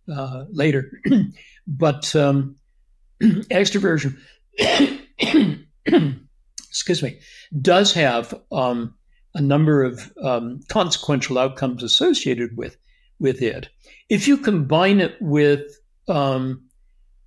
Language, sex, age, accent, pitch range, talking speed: English, male, 60-79, American, 125-155 Hz, 90 wpm